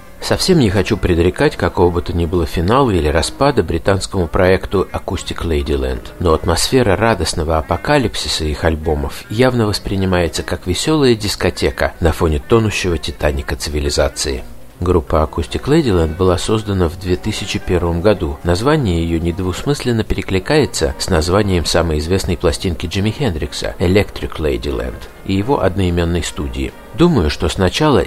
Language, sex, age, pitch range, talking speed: Russian, male, 50-69, 85-110 Hz, 130 wpm